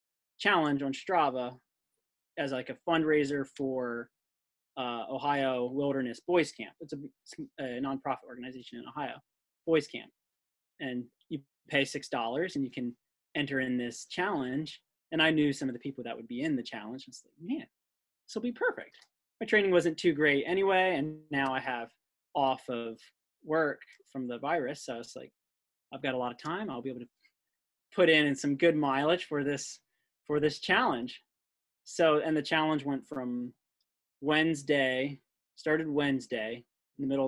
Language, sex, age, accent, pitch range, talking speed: English, male, 20-39, American, 125-155 Hz, 170 wpm